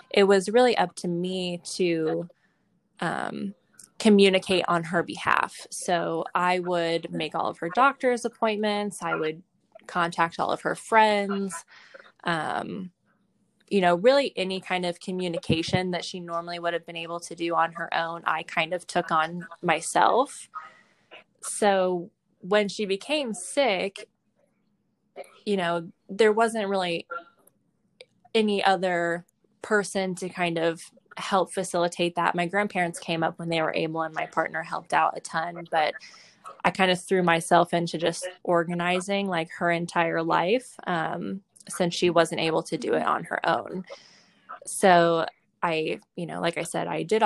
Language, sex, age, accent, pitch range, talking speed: English, female, 20-39, American, 170-200 Hz, 155 wpm